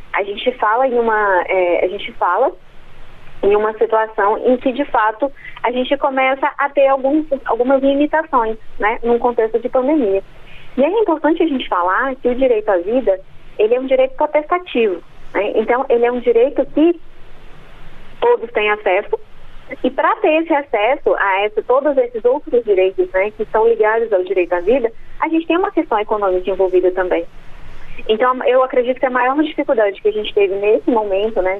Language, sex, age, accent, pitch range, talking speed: Portuguese, female, 20-39, Brazilian, 210-305 Hz, 185 wpm